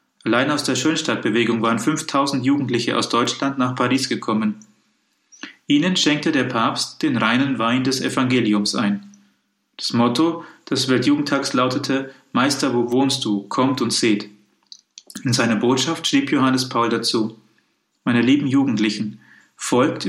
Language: German